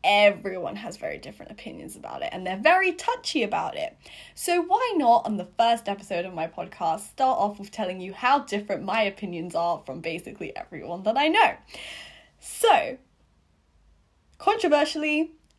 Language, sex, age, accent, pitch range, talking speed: English, female, 10-29, British, 195-295 Hz, 160 wpm